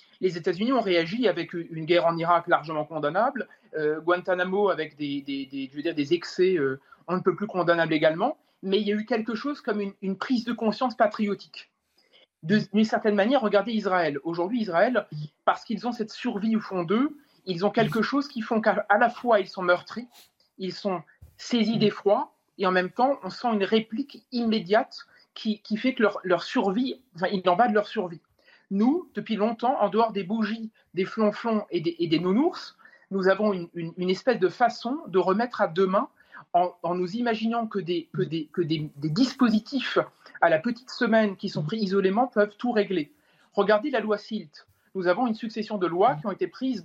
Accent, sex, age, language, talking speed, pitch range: French, male, 30-49, French, 200 wpm, 185-240 Hz